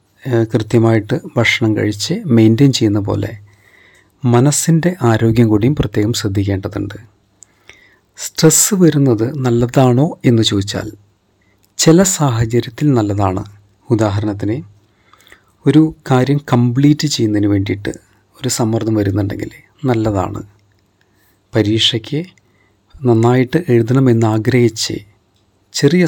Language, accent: Malayalam, native